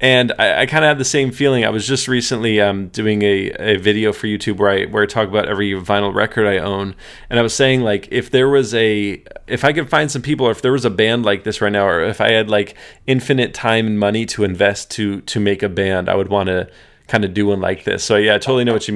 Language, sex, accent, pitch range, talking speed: English, male, American, 105-125 Hz, 280 wpm